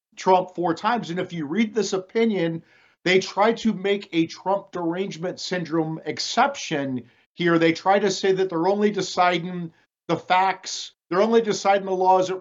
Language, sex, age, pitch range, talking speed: English, male, 50-69, 160-190 Hz, 175 wpm